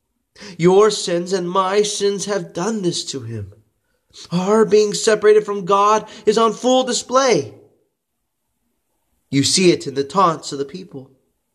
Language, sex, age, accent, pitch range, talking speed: English, male, 30-49, American, 120-195 Hz, 145 wpm